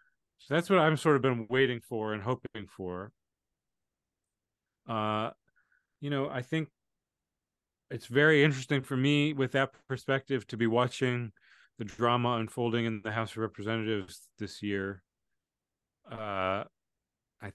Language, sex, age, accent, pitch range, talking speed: English, male, 30-49, American, 105-125 Hz, 135 wpm